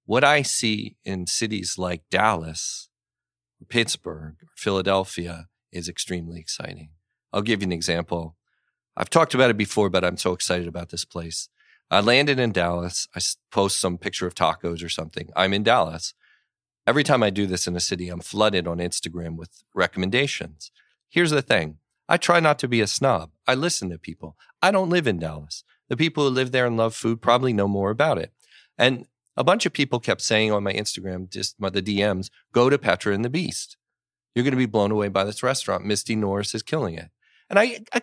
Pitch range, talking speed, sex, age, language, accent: 90-120 Hz, 200 wpm, male, 40-59, English, American